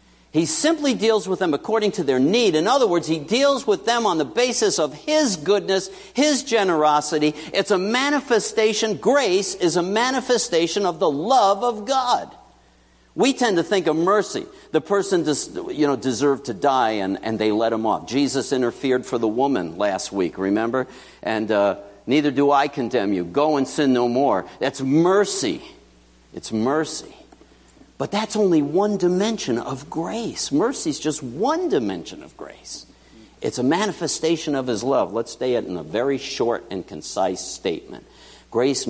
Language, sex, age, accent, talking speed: English, male, 60-79, American, 170 wpm